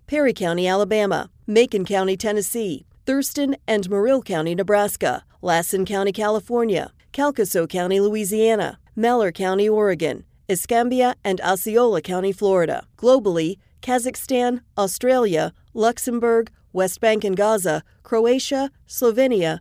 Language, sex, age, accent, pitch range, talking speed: English, female, 40-59, American, 180-230 Hz, 105 wpm